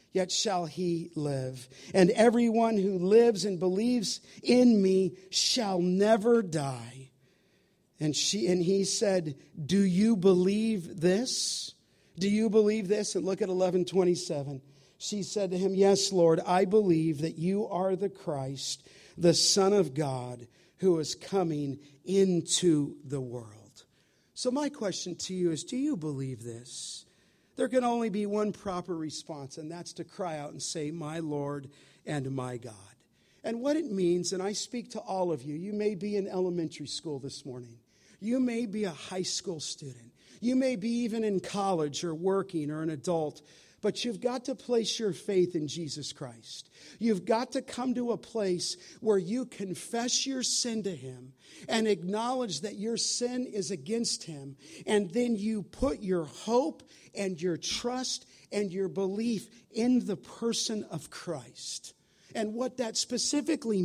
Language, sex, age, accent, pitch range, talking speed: English, male, 50-69, American, 160-220 Hz, 165 wpm